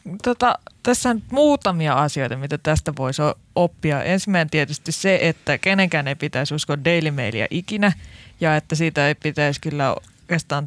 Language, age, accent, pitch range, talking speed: Finnish, 20-39, native, 145-175 Hz, 145 wpm